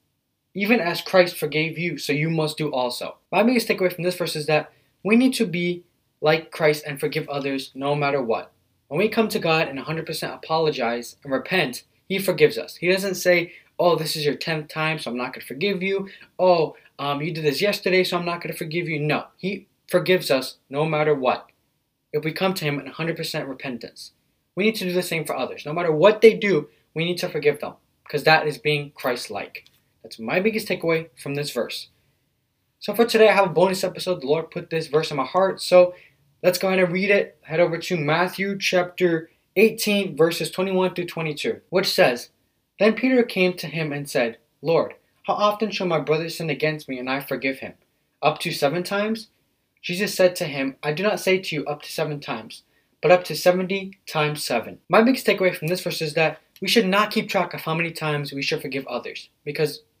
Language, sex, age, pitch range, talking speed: English, male, 20-39, 145-185 Hz, 220 wpm